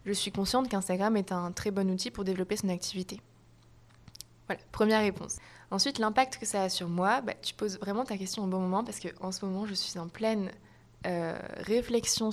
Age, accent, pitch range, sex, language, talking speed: 20-39, French, 185-220 Hz, female, French, 205 wpm